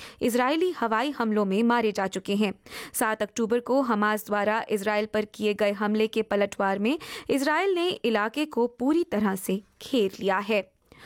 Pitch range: 210-275 Hz